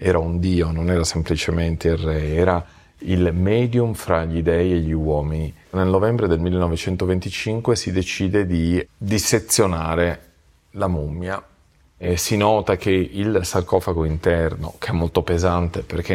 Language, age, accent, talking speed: Italian, 40-59, native, 145 wpm